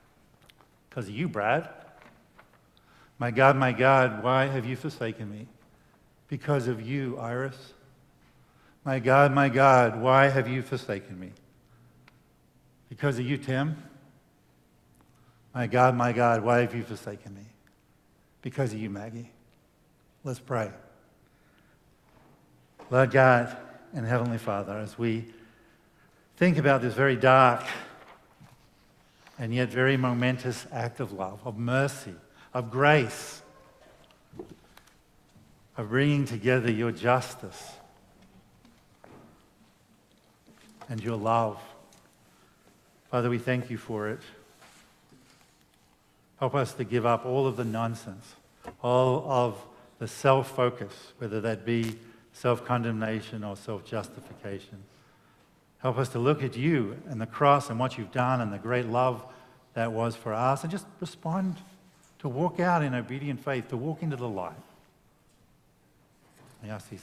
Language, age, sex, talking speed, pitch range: English, 50-69, male, 125 wpm, 115-135 Hz